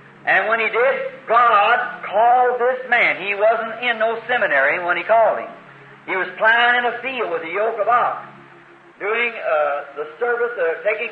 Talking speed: 185 wpm